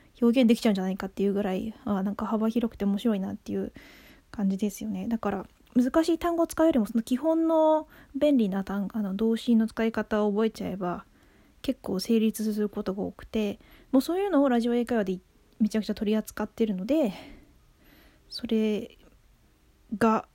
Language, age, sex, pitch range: Japanese, 20-39, female, 205-255 Hz